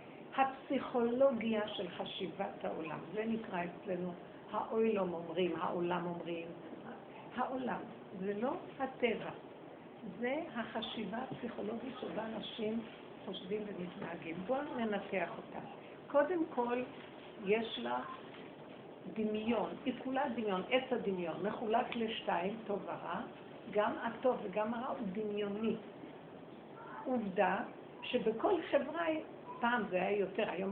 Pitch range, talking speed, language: 200-250 Hz, 105 wpm, Hebrew